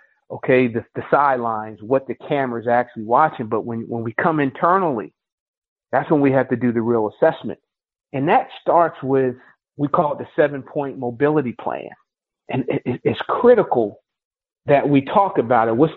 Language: English